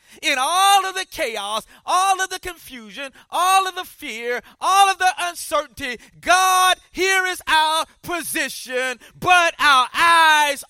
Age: 40-59